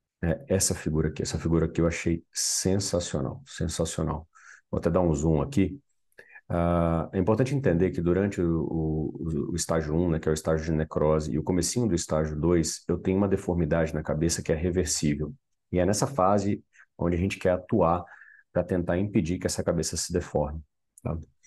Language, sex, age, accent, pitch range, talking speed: Portuguese, male, 40-59, Brazilian, 80-95 Hz, 175 wpm